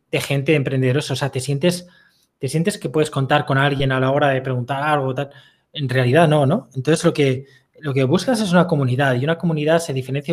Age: 20-39